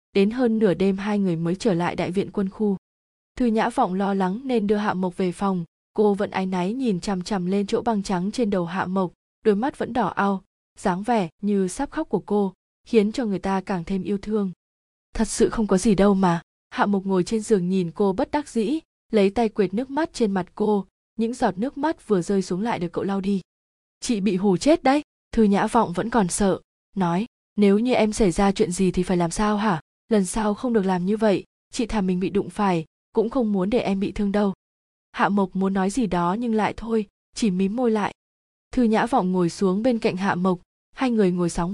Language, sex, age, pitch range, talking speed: Vietnamese, female, 20-39, 185-225 Hz, 240 wpm